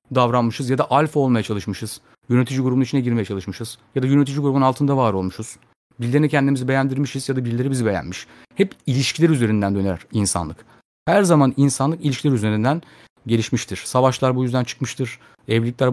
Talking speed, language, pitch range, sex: 160 wpm, Turkish, 120-155 Hz, male